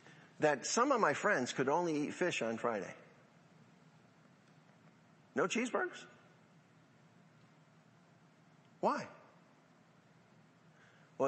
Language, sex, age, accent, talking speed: English, male, 50-69, American, 80 wpm